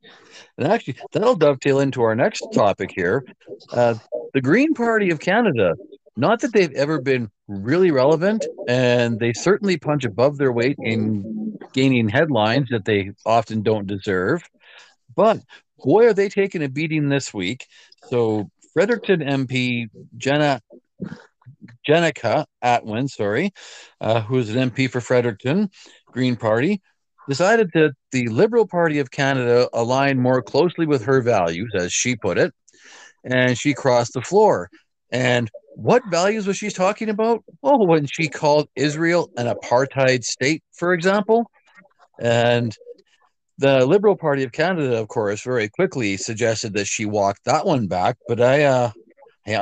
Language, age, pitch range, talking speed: English, 50-69, 120-170 Hz, 145 wpm